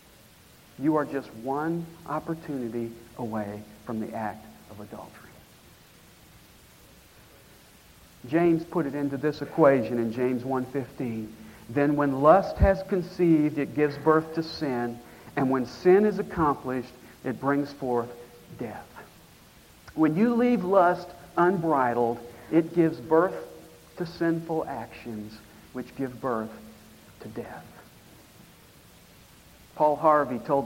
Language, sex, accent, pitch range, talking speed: English, male, American, 125-170 Hz, 115 wpm